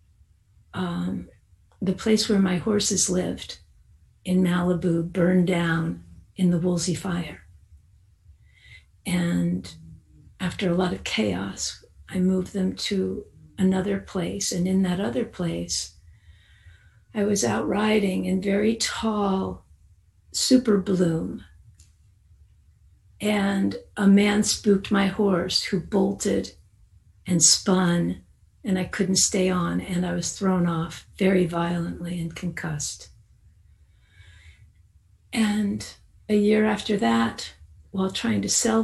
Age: 50-69